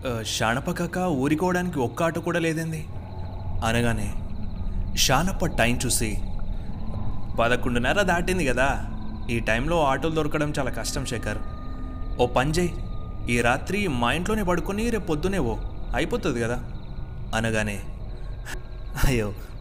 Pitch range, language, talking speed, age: 100-135 Hz, Telugu, 105 wpm, 30-49